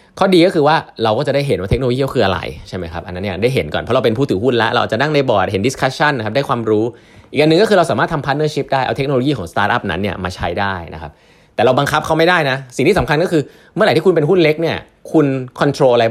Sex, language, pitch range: male, Thai, 105-150 Hz